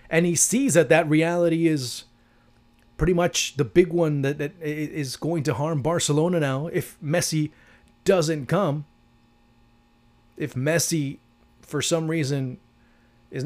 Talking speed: 135 wpm